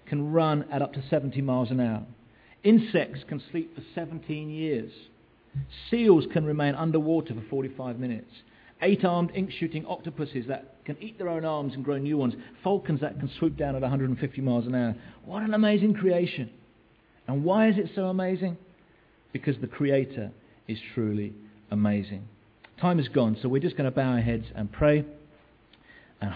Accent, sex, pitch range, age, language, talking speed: British, male, 110-150 Hz, 50-69, English, 170 wpm